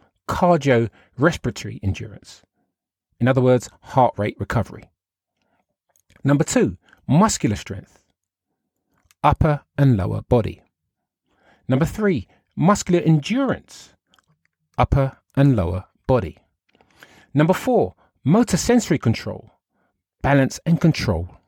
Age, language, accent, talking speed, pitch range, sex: 40-59, English, British, 90 wpm, 110-180 Hz, male